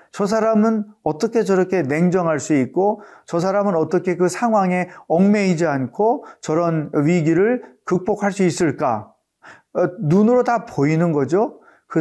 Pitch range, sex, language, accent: 150-205 Hz, male, Korean, native